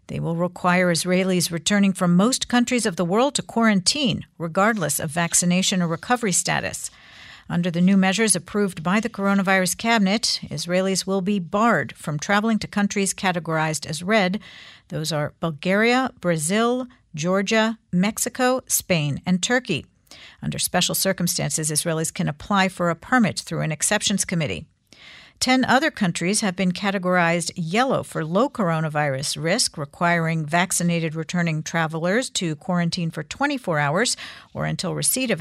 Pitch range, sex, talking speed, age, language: 165-210 Hz, female, 145 wpm, 50-69, English